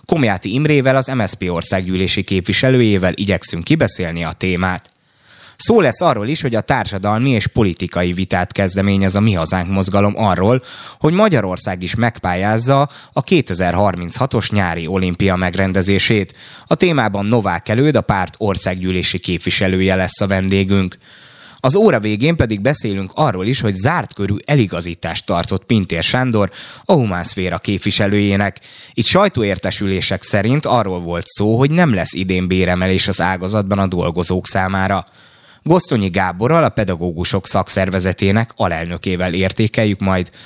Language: Hungarian